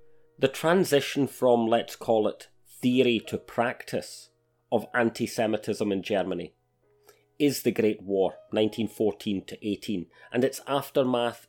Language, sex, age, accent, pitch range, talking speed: English, male, 30-49, British, 105-135 Hz, 110 wpm